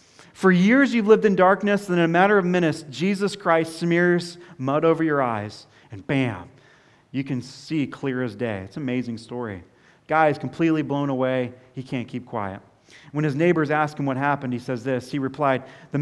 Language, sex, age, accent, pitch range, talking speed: English, male, 40-59, American, 130-160 Hz, 200 wpm